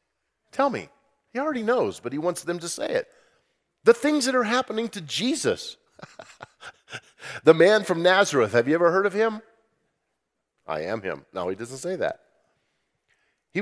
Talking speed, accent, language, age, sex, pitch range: 170 wpm, American, English, 40-59, male, 165-220 Hz